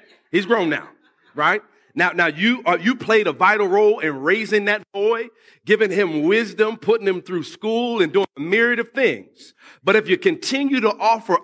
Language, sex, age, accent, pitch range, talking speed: English, male, 50-69, American, 180-260 Hz, 190 wpm